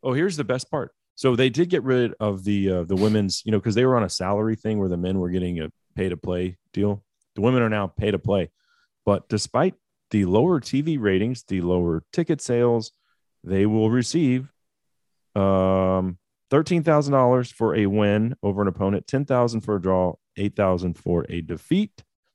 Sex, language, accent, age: male, English, American, 40-59